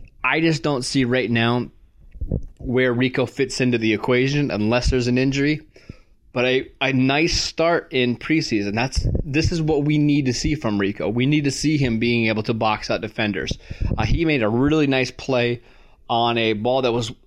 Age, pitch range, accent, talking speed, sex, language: 20-39, 120-140 Hz, American, 195 wpm, male, English